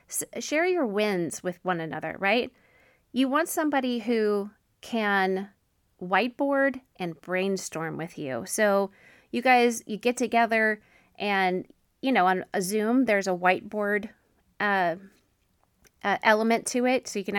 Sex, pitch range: female, 185-230 Hz